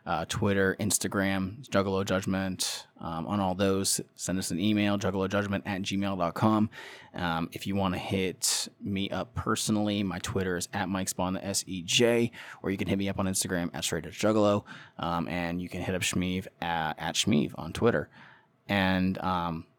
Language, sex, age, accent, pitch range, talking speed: English, male, 20-39, American, 90-105 Hz, 175 wpm